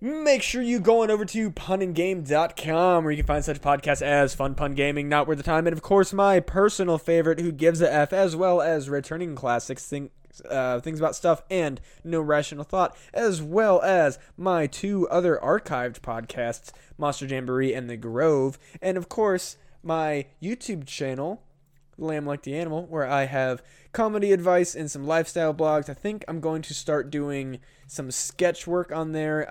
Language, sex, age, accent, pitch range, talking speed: English, male, 20-39, American, 135-175 Hz, 185 wpm